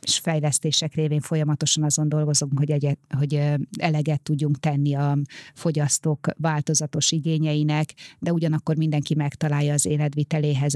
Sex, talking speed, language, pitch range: female, 125 wpm, Hungarian, 145-155 Hz